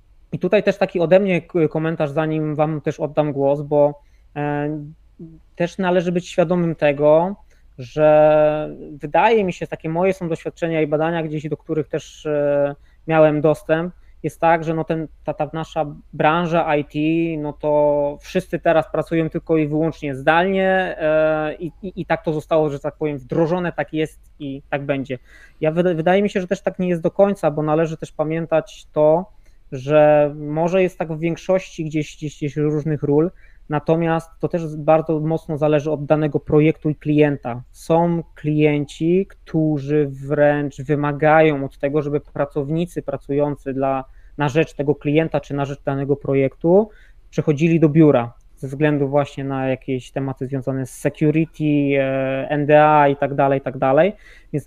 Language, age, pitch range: Polish, 20-39, 145-165 Hz